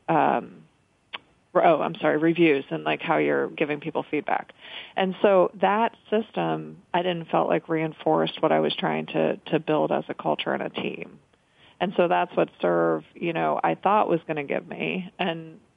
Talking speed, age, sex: 185 wpm, 40-59, female